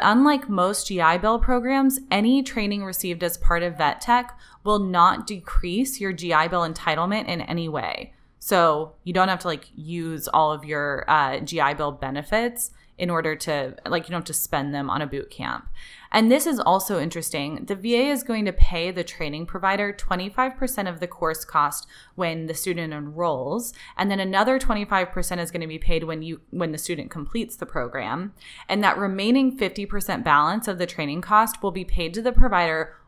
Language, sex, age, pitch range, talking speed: English, female, 20-39, 160-210 Hz, 190 wpm